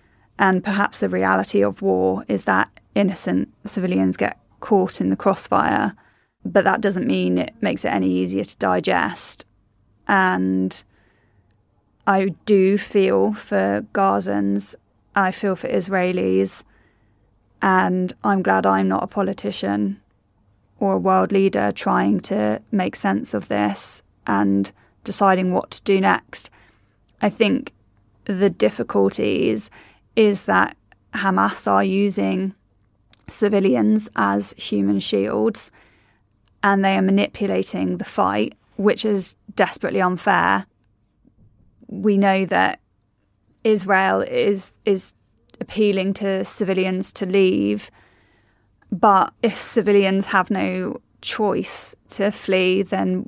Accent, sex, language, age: British, female, English, 20-39